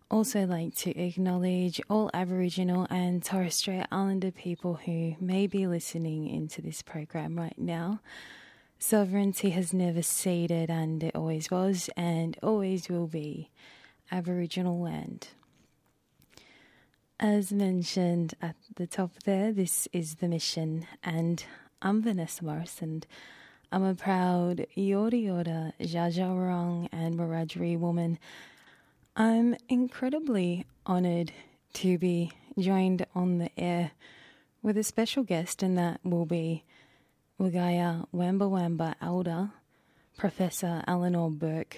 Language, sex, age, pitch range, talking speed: English, female, 20-39, 170-195 Hz, 120 wpm